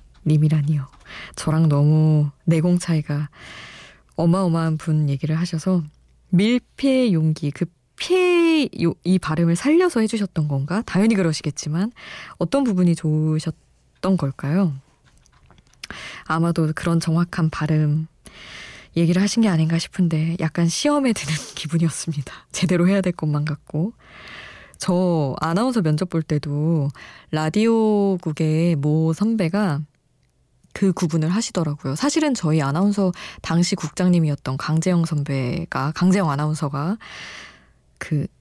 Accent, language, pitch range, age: native, Korean, 150-185 Hz, 20-39